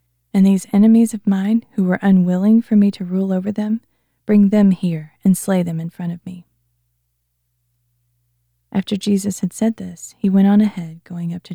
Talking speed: 185 wpm